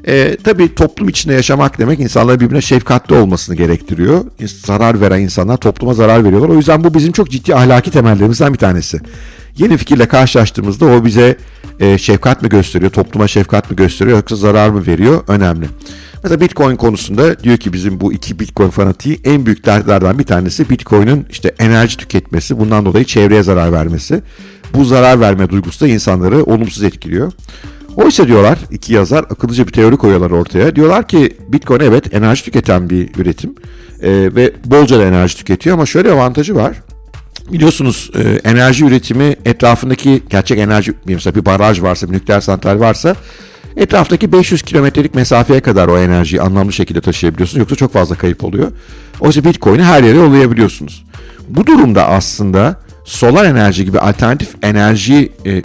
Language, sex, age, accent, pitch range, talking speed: Turkish, male, 50-69, native, 95-130 Hz, 160 wpm